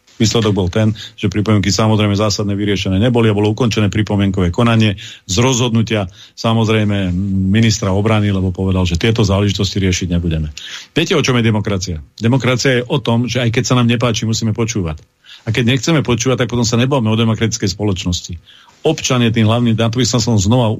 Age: 40-59